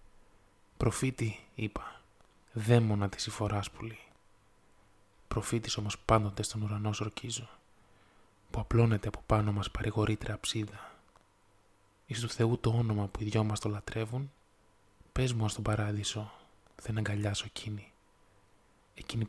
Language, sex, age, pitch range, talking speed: Greek, male, 20-39, 100-110 Hz, 120 wpm